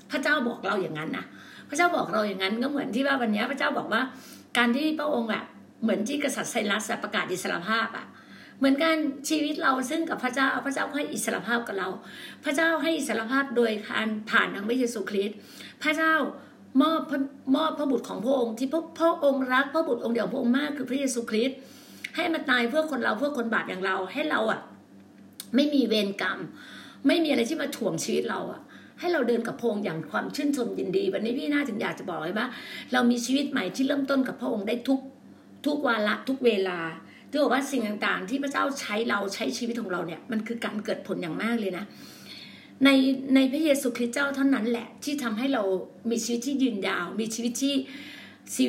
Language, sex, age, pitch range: Thai, female, 60-79, 225-280 Hz